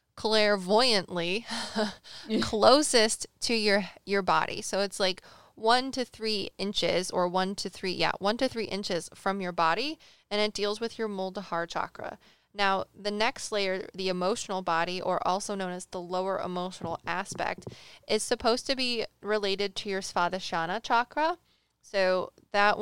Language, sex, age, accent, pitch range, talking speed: English, female, 20-39, American, 185-220 Hz, 155 wpm